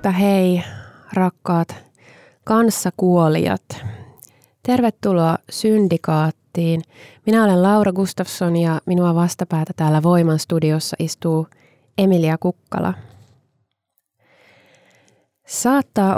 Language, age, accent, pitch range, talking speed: Finnish, 20-39, native, 160-195 Hz, 70 wpm